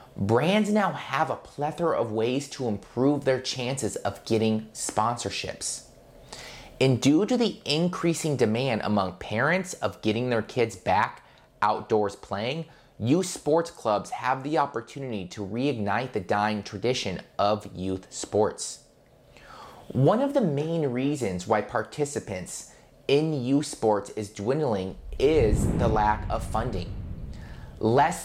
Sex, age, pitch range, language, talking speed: male, 30-49, 105-150 Hz, English, 130 wpm